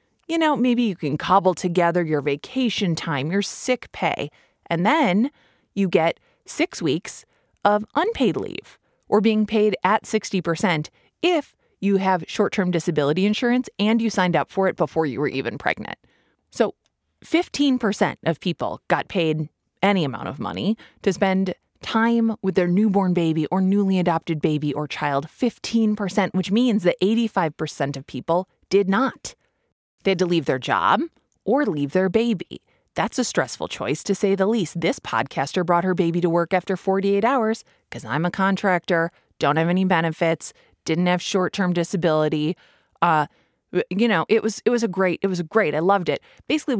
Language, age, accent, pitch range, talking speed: English, 20-39, American, 165-220 Hz, 170 wpm